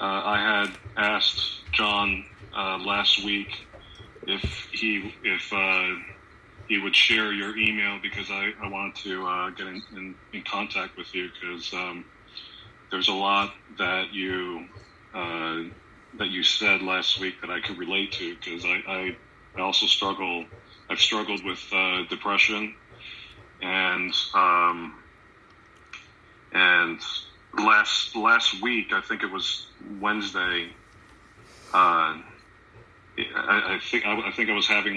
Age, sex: 40-59, male